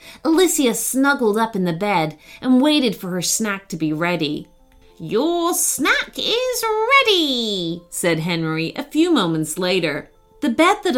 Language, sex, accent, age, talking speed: English, female, American, 30-49, 150 wpm